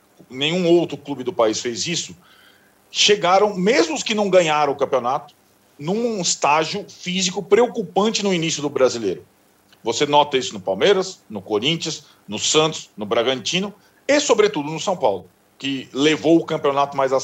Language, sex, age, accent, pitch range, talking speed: Portuguese, male, 40-59, Brazilian, 140-190 Hz, 155 wpm